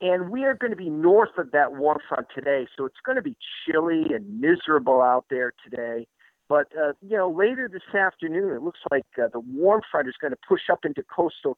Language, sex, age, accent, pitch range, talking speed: English, male, 50-69, American, 145-230 Hz, 230 wpm